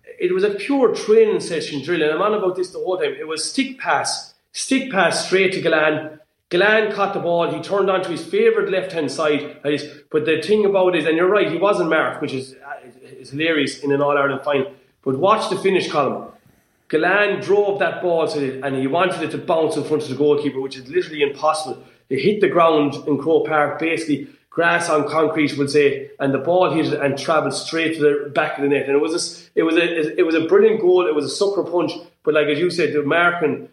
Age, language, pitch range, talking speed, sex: 30-49, English, 145-185 Hz, 235 wpm, male